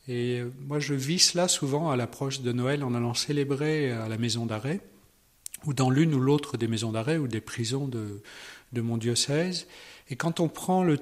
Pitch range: 125-165 Hz